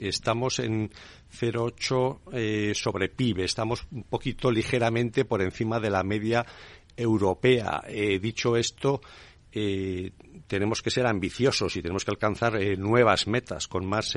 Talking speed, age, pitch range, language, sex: 135 wpm, 50-69, 95-115 Hz, Spanish, male